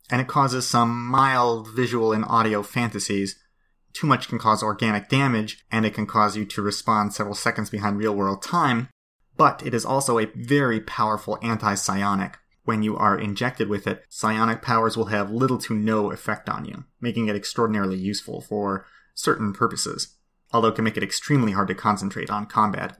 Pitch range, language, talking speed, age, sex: 105-130 Hz, English, 180 wpm, 30-49, male